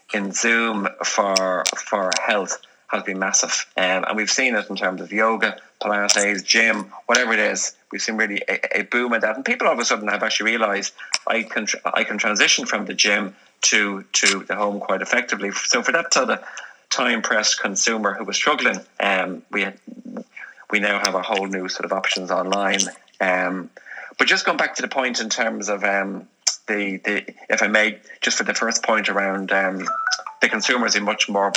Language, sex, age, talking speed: English, male, 30-49, 205 wpm